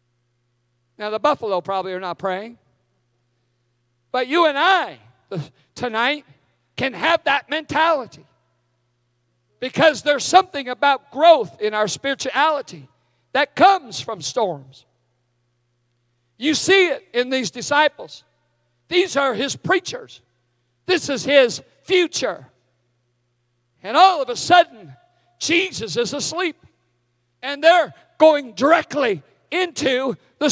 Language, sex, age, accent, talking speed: English, male, 50-69, American, 110 wpm